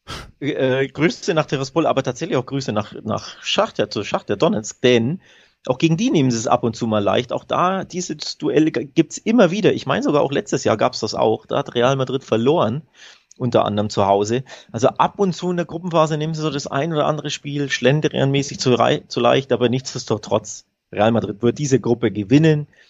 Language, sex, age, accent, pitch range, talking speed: German, male, 30-49, German, 115-150 Hz, 205 wpm